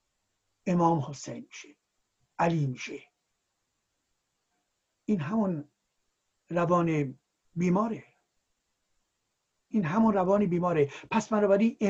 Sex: male